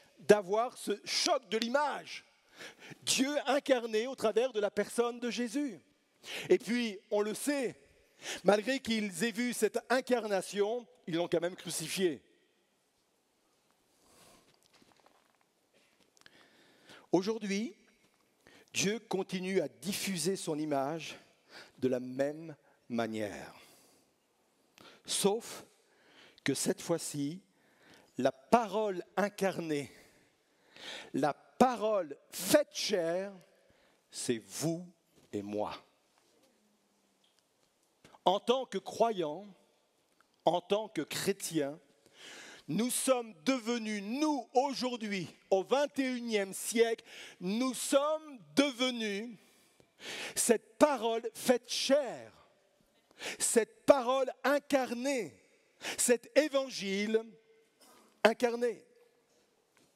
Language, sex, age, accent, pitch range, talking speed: French, male, 50-69, French, 180-250 Hz, 85 wpm